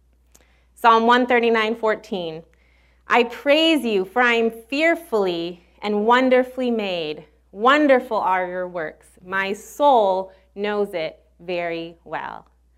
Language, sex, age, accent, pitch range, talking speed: English, female, 30-49, American, 175-240 Hz, 105 wpm